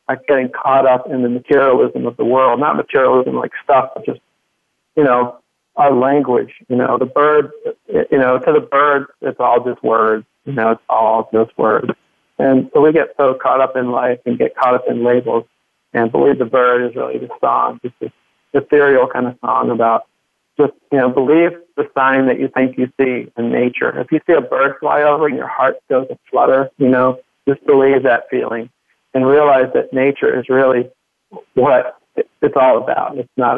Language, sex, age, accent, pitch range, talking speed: English, male, 40-59, American, 125-140 Hz, 205 wpm